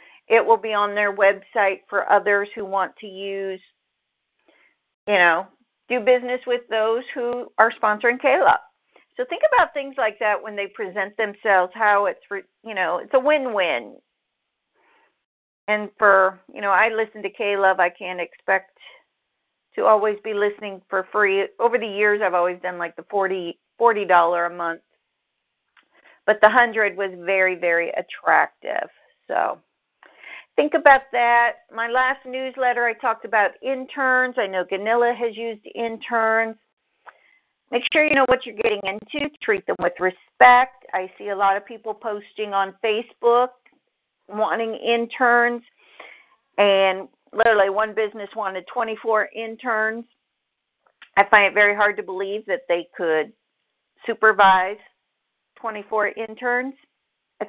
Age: 50-69